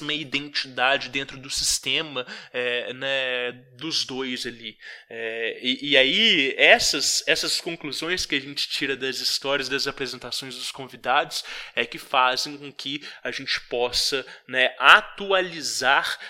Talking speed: 125 wpm